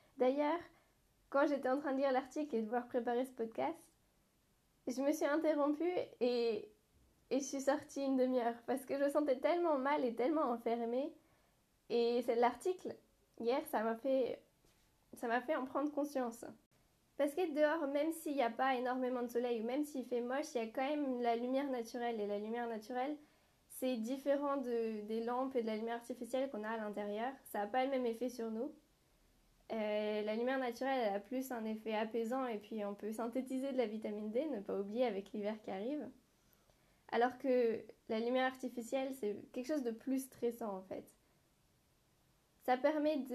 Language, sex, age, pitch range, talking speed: French, female, 10-29, 230-275 Hz, 190 wpm